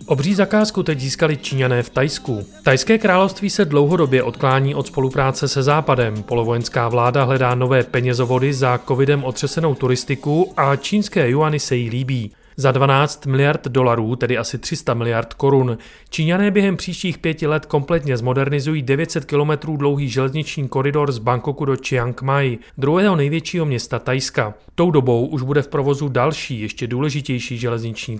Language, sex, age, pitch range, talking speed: Czech, male, 30-49, 115-150 Hz, 150 wpm